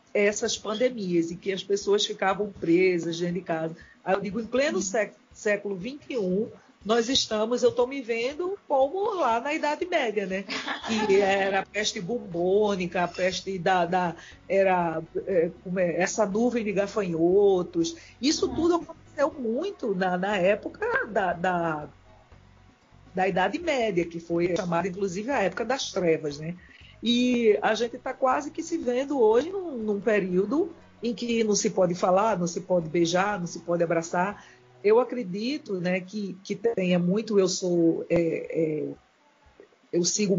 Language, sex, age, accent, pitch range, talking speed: Portuguese, female, 50-69, Brazilian, 180-235 Hz, 160 wpm